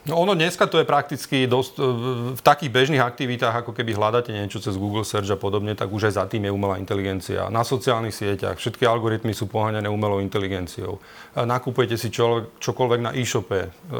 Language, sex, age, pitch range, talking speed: Slovak, male, 40-59, 105-130 Hz, 180 wpm